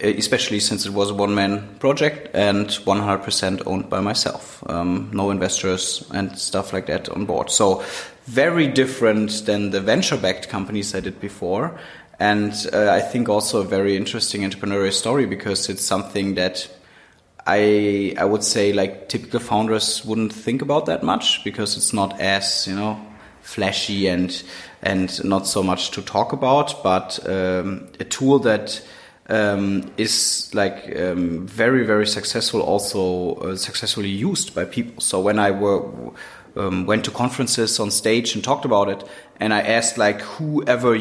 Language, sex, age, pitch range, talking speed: English, male, 30-49, 95-110 Hz, 160 wpm